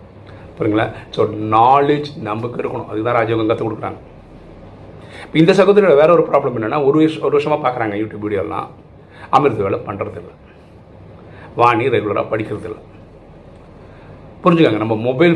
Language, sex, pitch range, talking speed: Tamil, male, 105-140 Hz, 130 wpm